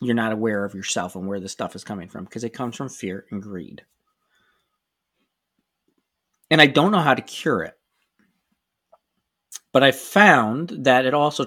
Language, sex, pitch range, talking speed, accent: English, male, 125-185 Hz, 175 wpm, American